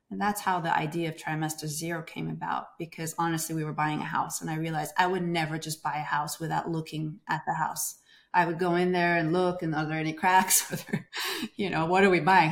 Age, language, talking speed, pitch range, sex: 30-49, English, 240 wpm, 160-215 Hz, female